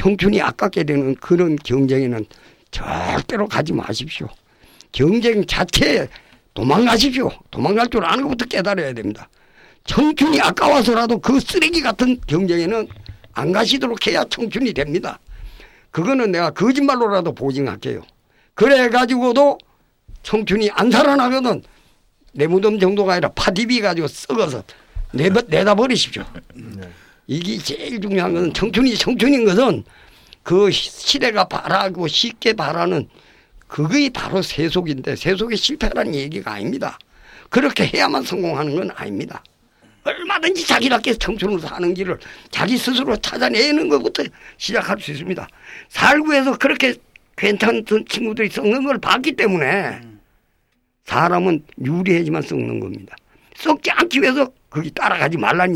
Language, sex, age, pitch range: Korean, male, 50-69, 165-250 Hz